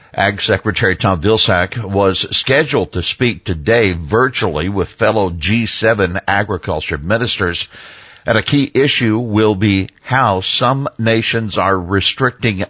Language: English